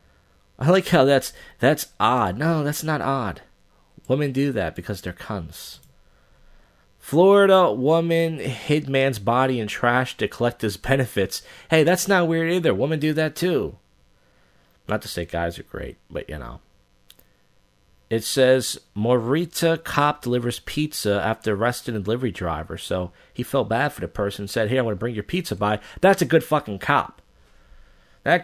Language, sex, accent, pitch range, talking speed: English, male, American, 105-150 Hz, 165 wpm